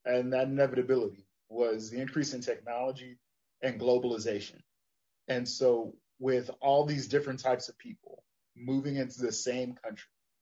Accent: American